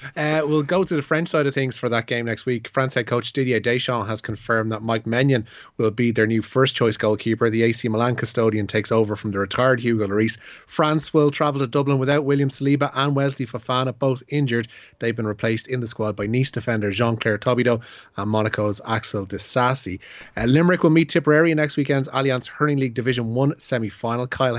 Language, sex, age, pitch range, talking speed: English, male, 30-49, 110-135 Hz, 205 wpm